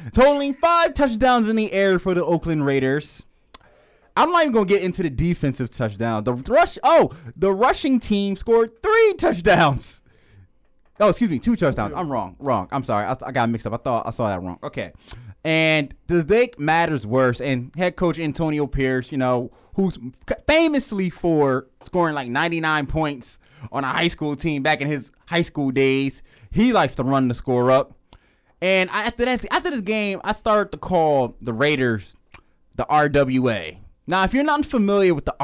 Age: 20-39